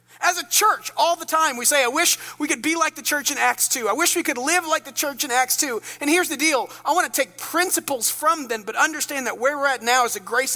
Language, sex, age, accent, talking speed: English, male, 40-59, American, 290 wpm